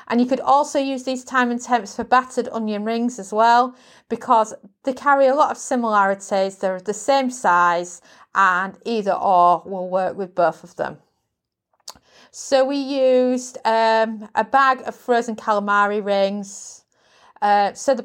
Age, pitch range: 30-49, 210-265 Hz